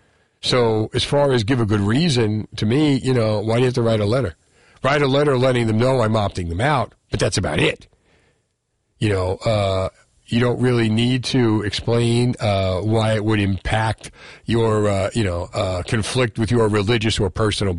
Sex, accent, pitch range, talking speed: male, American, 95-130 Hz, 200 wpm